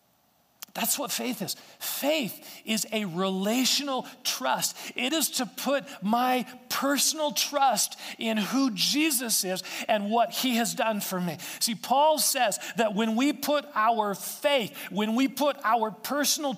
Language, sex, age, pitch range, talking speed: English, male, 40-59, 160-250 Hz, 150 wpm